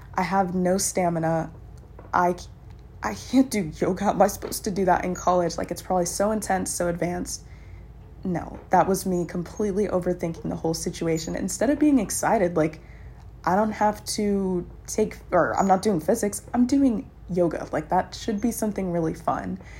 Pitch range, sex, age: 170-195 Hz, female, 20-39